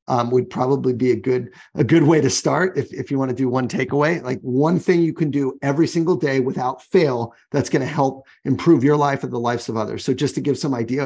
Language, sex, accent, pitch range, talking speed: English, male, American, 125-155 Hz, 260 wpm